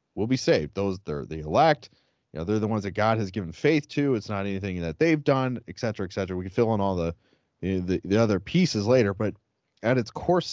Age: 30-49